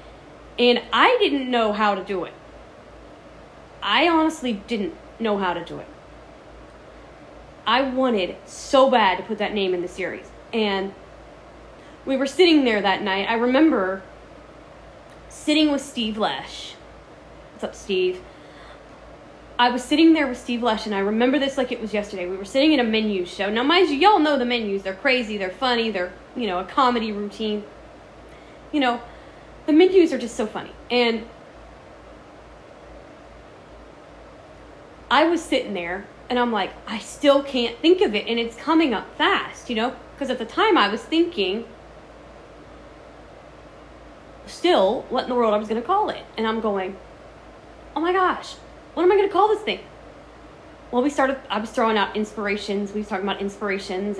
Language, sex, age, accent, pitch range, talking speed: English, female, 20-39, American, 205-285 Hz, 175 wpm